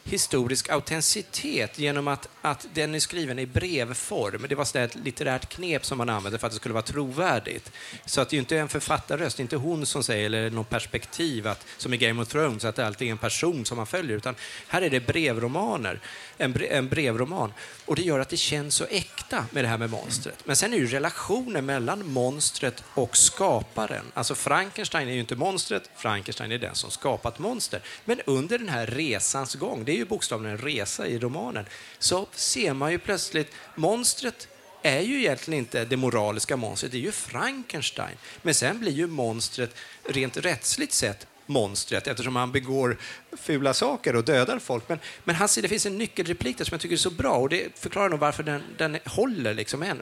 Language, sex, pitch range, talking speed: Swedish, male, 120-165 Hz, 205 wpm